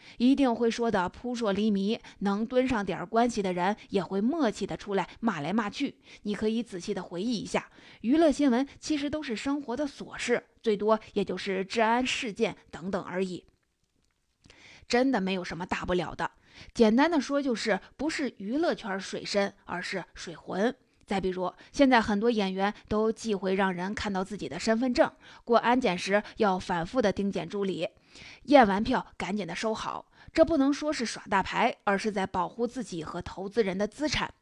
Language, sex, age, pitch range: Chinese, female, 20-39, 195-245 Hz